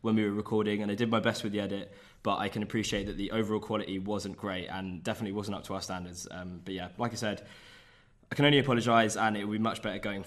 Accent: British